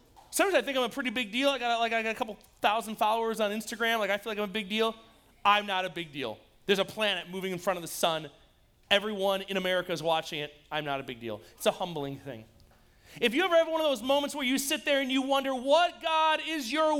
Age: 30-49